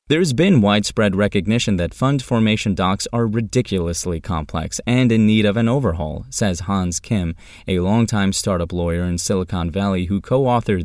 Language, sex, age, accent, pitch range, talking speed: English, male, 20-39, American, 85-115 Hz, 160 wpm